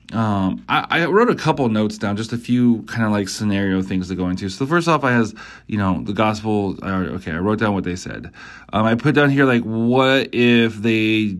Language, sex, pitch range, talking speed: English, male, 95-120 Hz, 240 wpm